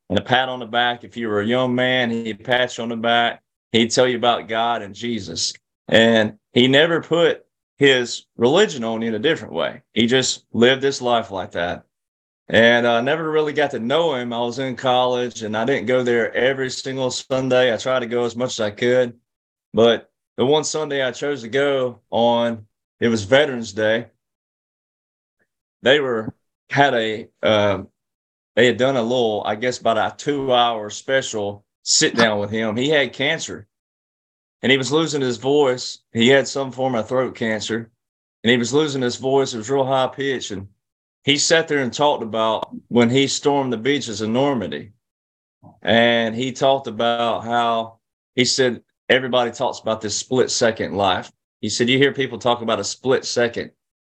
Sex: male